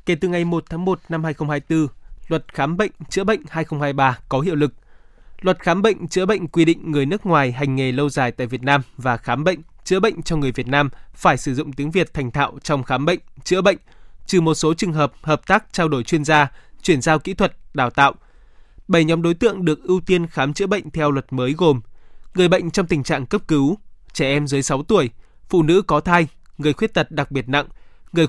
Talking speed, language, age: 230 wpm, Vietnamese, 20-39